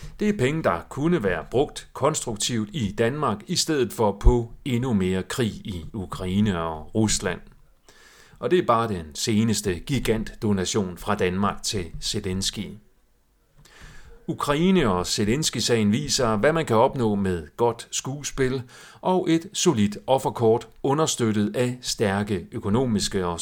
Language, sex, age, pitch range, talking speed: Danish, male, 40-59, 100-145 Hz, 135 wpm